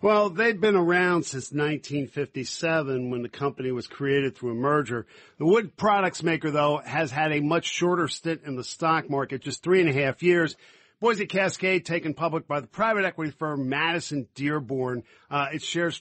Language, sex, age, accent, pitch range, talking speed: English, male, 50-69, American, 140-185 Hz, 185 wpm